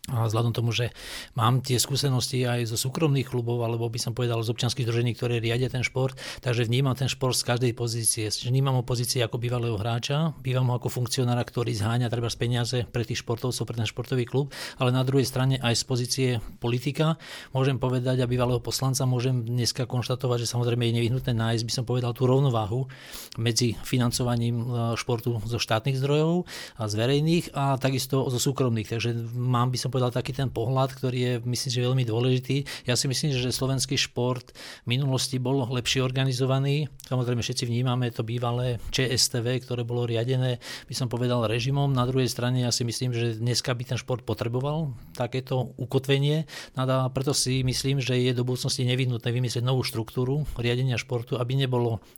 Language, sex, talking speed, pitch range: Slovak, male, 180 wpm, 120-130 Hz